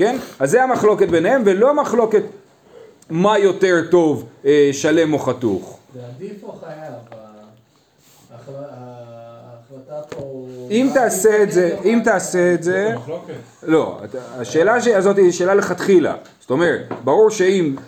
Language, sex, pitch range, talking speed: Hebrew, male, 130-185 Hz, 130 wpm